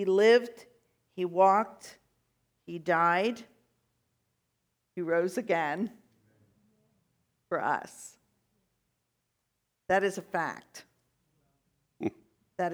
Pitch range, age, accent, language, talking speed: 185-230 Hz, 50-69, American, English, 75 wpm